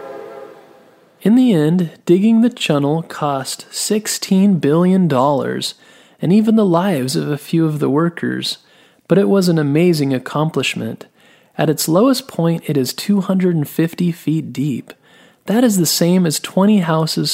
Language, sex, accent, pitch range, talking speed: English, male, American, 140-190 Hz, 140 wpm